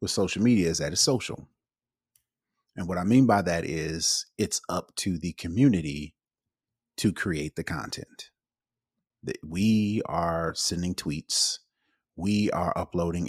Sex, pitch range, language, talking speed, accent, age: male, 85-115 Hz, English, 140 wpm, American, 30-49